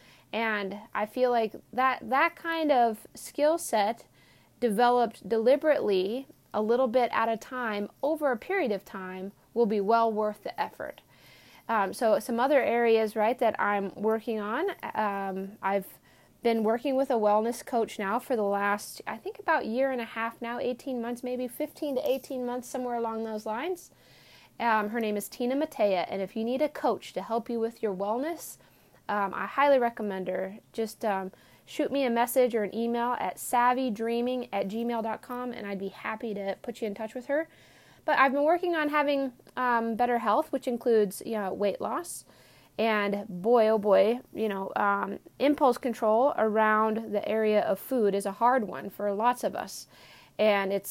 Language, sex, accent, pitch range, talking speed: English, female, American, 205-250 Hz, 185 wpm